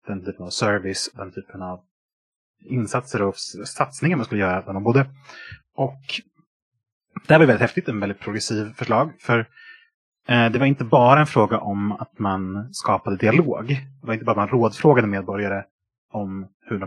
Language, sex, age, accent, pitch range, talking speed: Swedish, male, 30-49, Norwegian, 100-135 Hz, 165 wpm